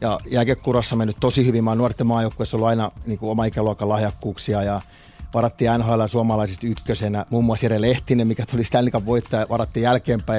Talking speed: 175 wpm